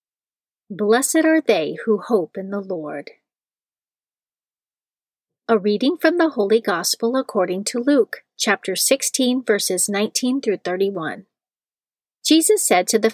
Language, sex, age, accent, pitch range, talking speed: English, female, 40-59, American, 195-245 Hz, 125 wpm